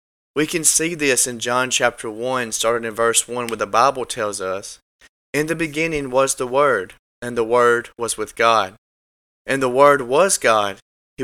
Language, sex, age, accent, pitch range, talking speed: English, male, 20-39, American, 115-140 Hz, 185 wpm